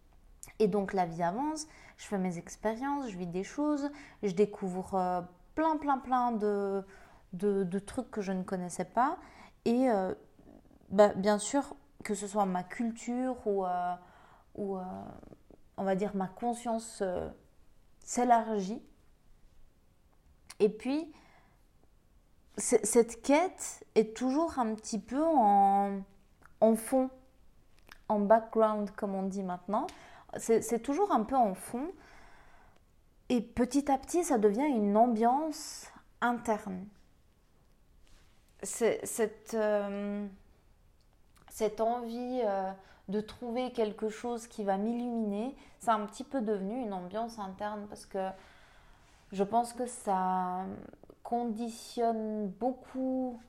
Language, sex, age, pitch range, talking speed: French, female, 20-39, 195-245 Hz, 120 wpm